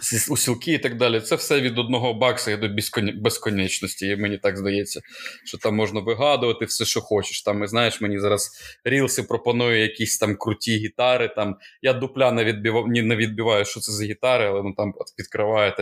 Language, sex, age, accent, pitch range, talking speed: Ukrainian, male, 20-39, native, 110-130 Hz, 190 wpm